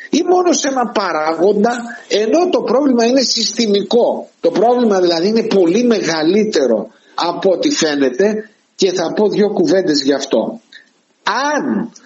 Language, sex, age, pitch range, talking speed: Greek, male, 60-79, 210-275 Hz, 135 wpm